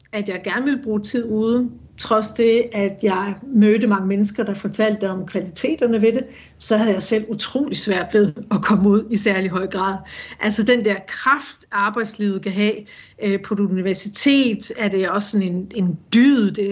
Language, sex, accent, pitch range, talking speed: Danish, female, native, 200-235 Hz, 190 wpm